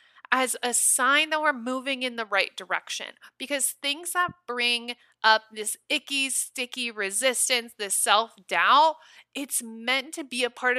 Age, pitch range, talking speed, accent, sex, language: 20-39, 230-275 Hz, 150 wpm, American, female, English